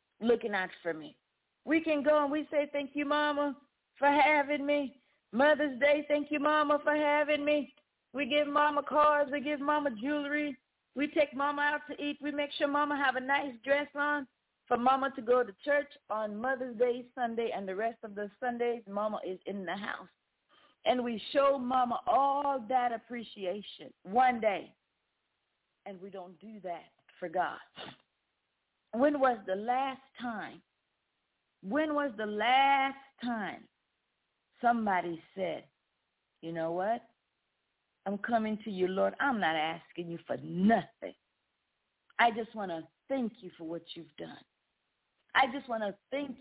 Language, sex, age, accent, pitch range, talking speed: English, female, 40-59, American, 200-290 Hz, 160 wpm